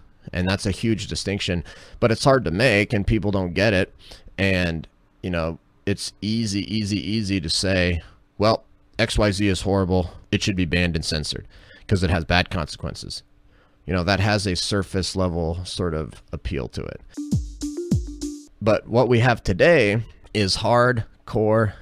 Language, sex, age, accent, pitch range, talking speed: English, male, 30-49, American, 90-105 Hz, 160 wpm